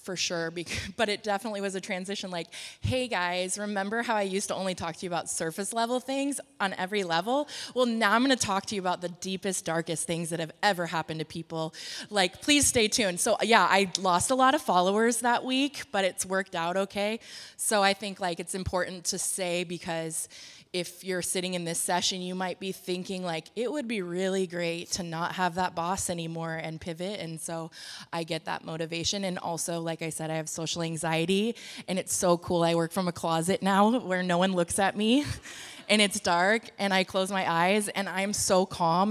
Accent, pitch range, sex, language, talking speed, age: American, 170-200 Hz, female, English, 215 wpm, 20-39